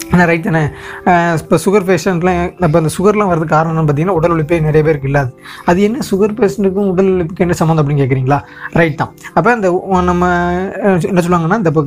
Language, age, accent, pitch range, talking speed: Tamil, 20-39, native, 155-190 Hz, 165 wpm